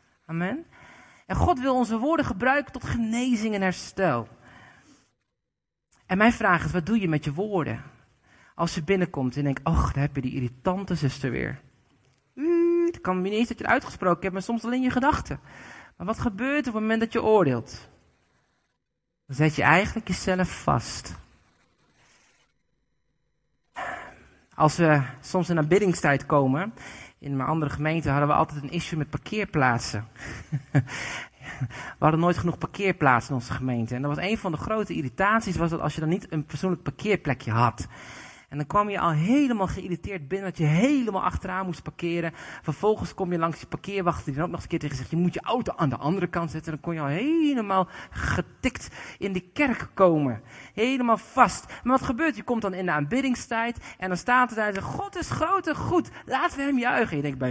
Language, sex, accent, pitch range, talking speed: Dutch, male, Dutch, 140-215 Hz, 195 wpm